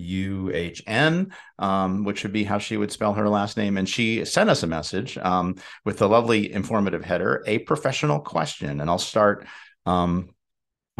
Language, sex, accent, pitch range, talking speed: English, male, American, 90-115 Hz, 170 wpm